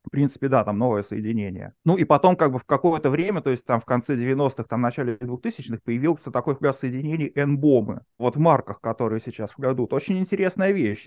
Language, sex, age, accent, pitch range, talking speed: Russian, male, 30-49, native, 125-170 Hz, 215 wpm